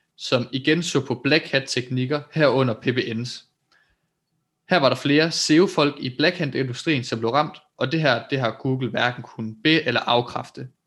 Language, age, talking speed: Danish, 20-39, 165 wpm